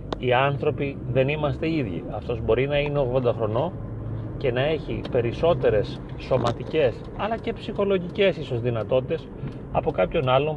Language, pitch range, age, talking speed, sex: Greek, 125-150 Hz, 30-49, 130 wpm, male